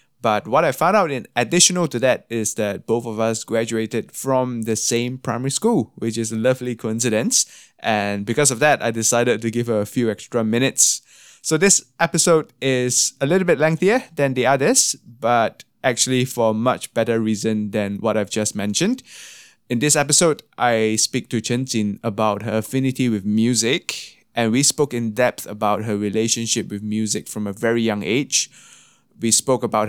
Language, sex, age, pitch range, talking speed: English, male, 20-39, 110-130 Hz, 185 wpm